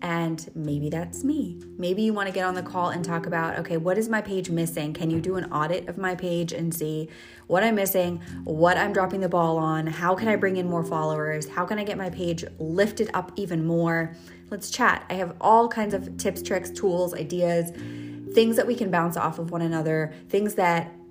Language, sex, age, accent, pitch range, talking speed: English, female, 20-39, American, 165-195 Hz, 220 wpm